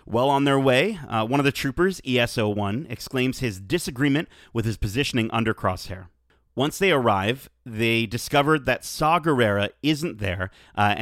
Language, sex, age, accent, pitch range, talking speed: English, male, 30-49, American, 105-140 Hz, 160 wpm